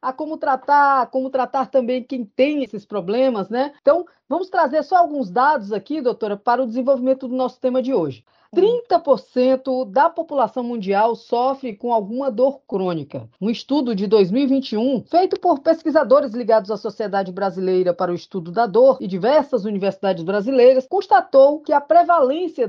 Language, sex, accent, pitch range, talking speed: Portuguese, female, Brazilian, 225-280 Hz, 160 wpm